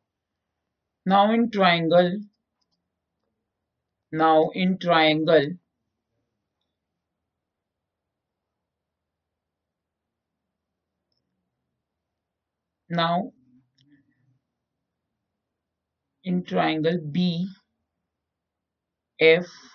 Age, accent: 50-69, Indian